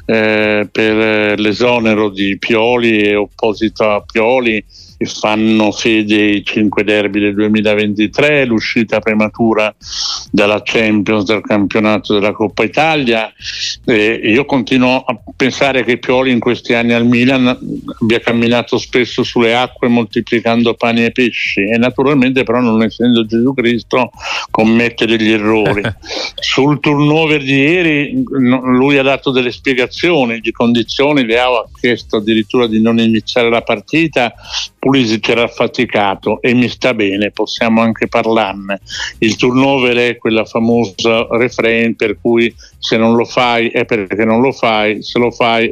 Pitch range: 110-125 Hz